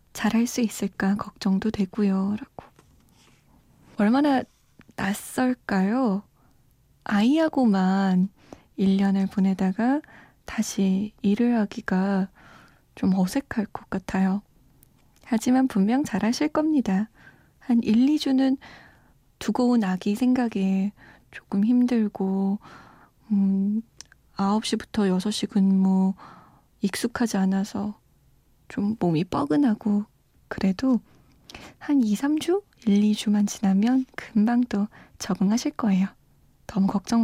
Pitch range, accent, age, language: 195-245 Hz, native, 20-39, Korean